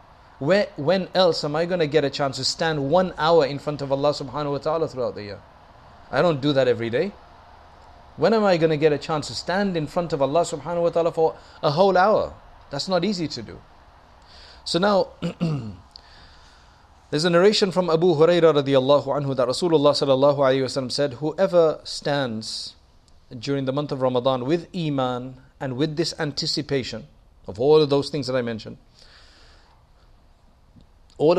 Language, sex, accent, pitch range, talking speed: English, male, South African, 105-160 Hz, 175 wpm